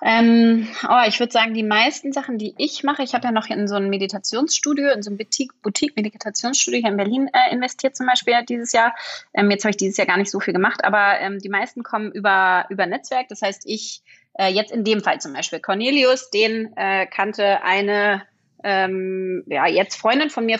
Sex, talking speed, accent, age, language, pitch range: female, 215 wpm, German, 30-49, German, 185-225 Hz